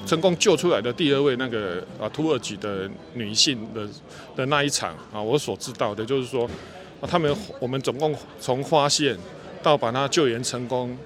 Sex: male